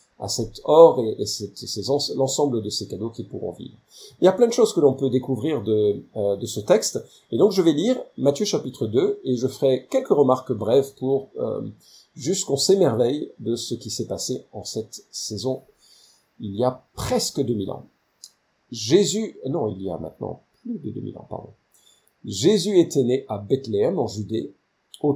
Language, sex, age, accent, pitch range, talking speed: French, male, 50-69, French, 120-190 Hz, 190 wpm